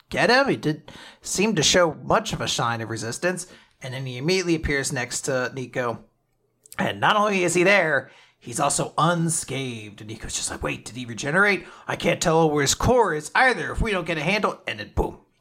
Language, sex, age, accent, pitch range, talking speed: English, male, 30-49, American, 125-185 Hz, 215 wpm